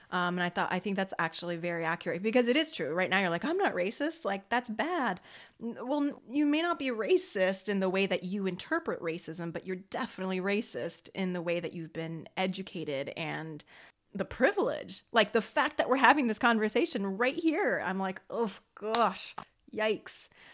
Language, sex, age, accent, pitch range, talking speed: English, female, 30-49, American, 175-215 Hz, 195 wpm